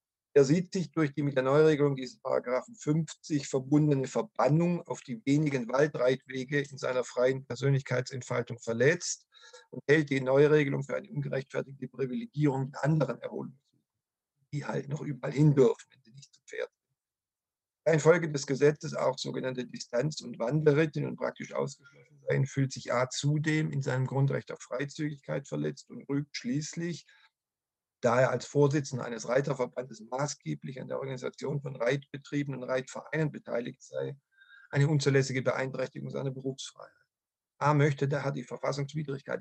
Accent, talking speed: German, 145 wpm